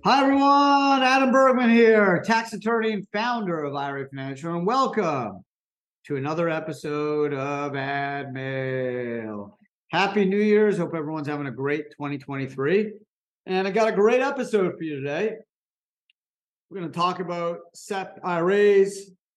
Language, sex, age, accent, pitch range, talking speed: English, male, 50-69, American, 145-210 Hz, 140 wpm